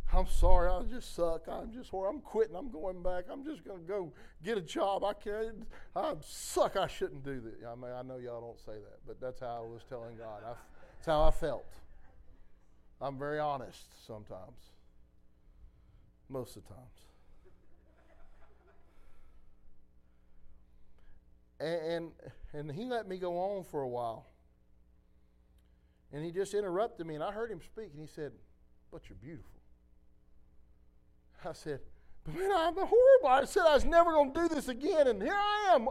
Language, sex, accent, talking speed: English, male, American, 170 wpm